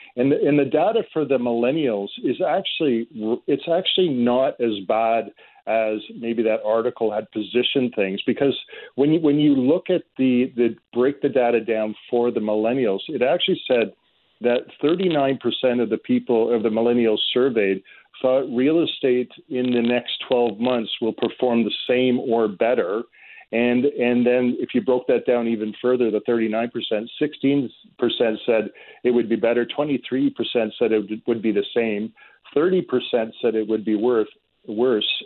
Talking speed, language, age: 165 wpm, English, 40-59